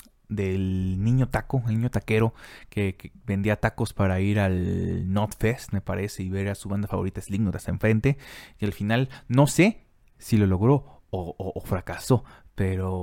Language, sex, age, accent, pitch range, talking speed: Spanish, male, 30-49, Mexican, 95-120 Hz, 175 wpm